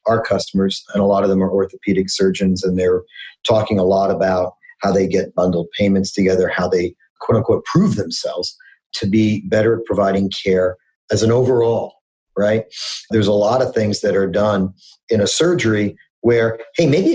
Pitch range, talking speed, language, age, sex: 105-130 Hz, 180 wpm, English, 40-59, male